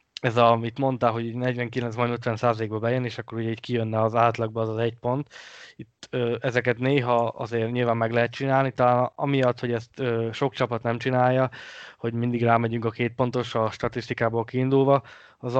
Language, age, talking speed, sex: Hungarian, 20-39, 180 wpm, male